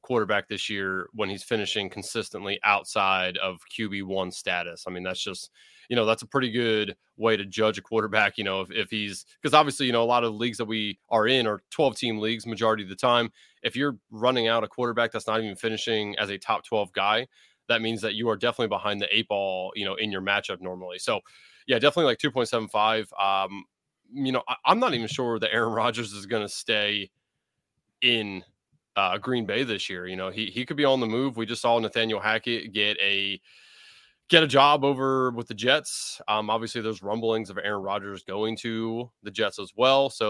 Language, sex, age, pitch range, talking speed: English, male, 30-49, 100-120 Hz, 220 wpm